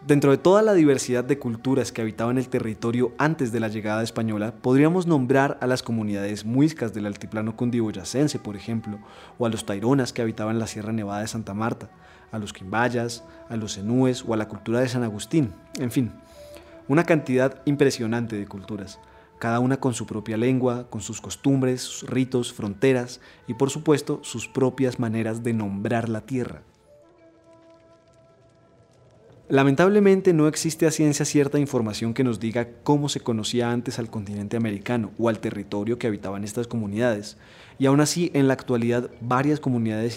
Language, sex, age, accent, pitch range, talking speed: Spanish, male, 30-49, Colombian, 110-135 Hz, 170 wpm